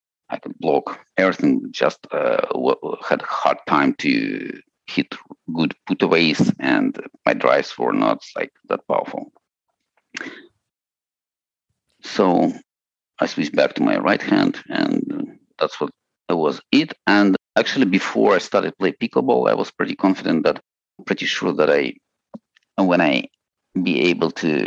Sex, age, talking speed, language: male, 50-69, 135 wpm, English